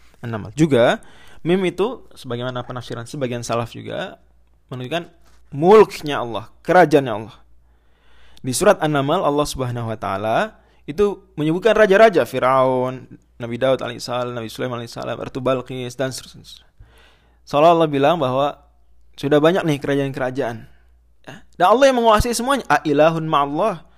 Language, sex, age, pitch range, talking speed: Indonesian, male, 20-39, 115-150 Hz, 125 wpm